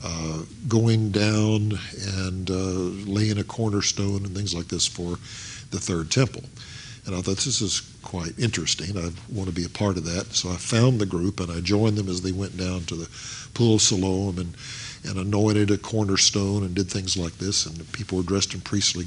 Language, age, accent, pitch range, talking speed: English, 50-69, American, 95-115 Hz, 210 wpm